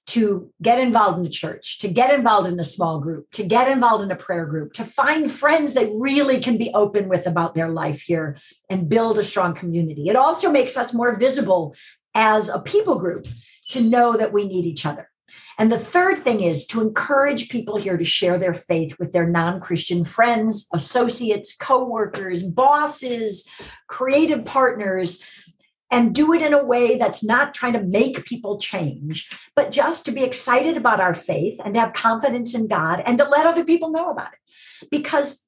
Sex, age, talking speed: female, 50-69, 190 wpm